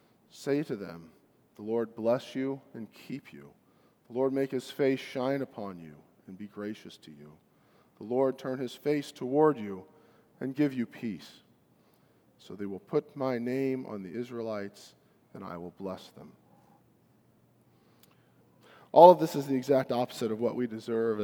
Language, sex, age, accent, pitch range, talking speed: English, male, 40-59, American, 105-130 Hz, 165 wpm